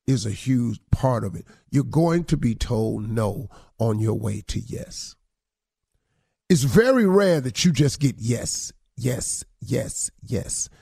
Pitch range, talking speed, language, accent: 125-180 Hz, 155 wpm, English, American